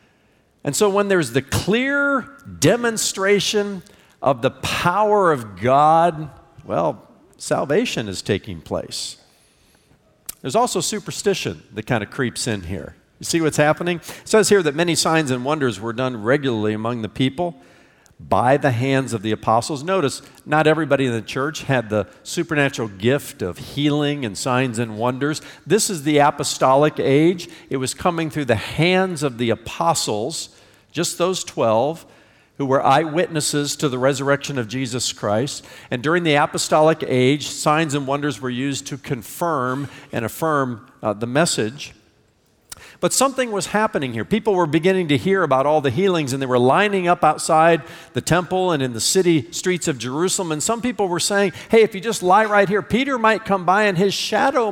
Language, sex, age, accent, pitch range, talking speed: English, male, 50-69, American, 130-185 Hz, 170 wpm